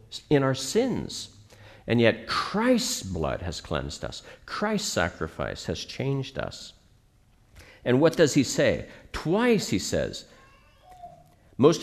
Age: 50-69